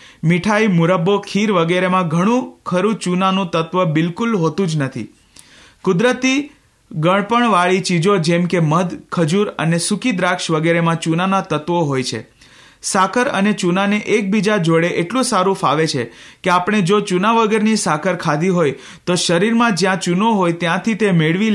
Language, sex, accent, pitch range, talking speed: Hindi, male, native, 165-210 Hz, 95 wpm